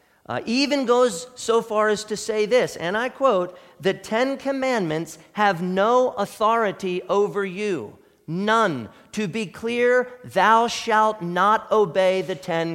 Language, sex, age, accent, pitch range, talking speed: English, male, 40-59, American, 140-215 Hz, 140 wpm